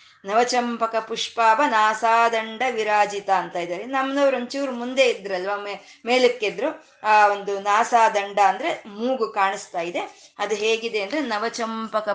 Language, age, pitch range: Kannada, 20-39, 195-255 Hz